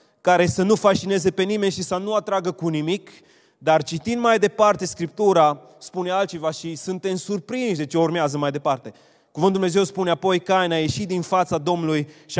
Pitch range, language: 155-190 Hz, Romanian